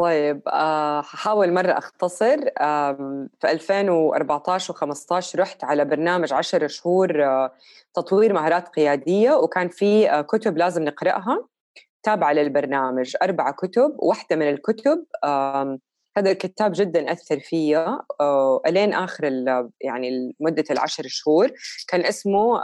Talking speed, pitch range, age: 110 wpm, 150-190 Hz, 20-39